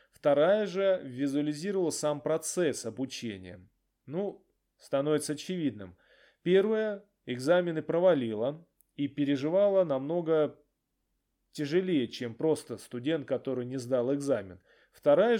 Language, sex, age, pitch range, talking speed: Russian, male, 20-39, 130-165 Hz, 95 wpm